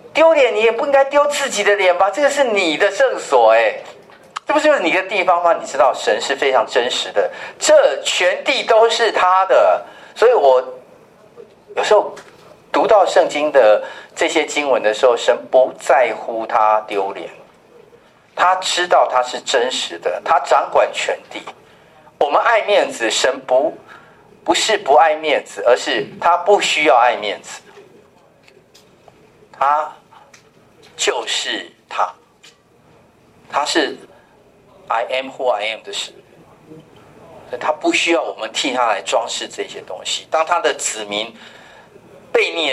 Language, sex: Chinese, male